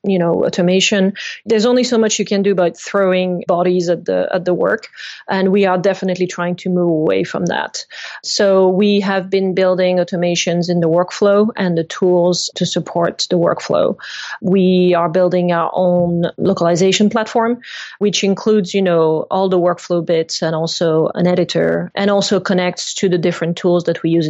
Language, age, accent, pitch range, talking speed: English, 30-49, Belgian, 170-195 Hz, 180 wpm